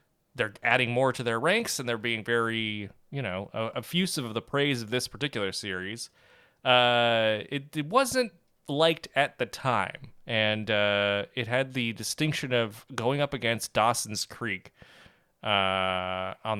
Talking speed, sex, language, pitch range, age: 150 wpm, male, English, 105-145 Hz, 30-49